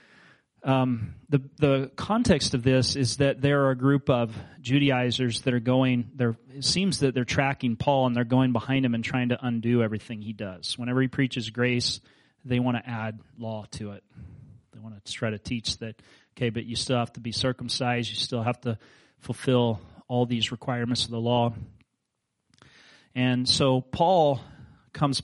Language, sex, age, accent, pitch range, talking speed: English, male, 30-49, American, 120-150 Hz, 185 wpm